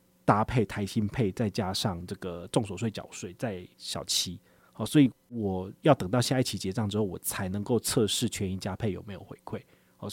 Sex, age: male, 30-49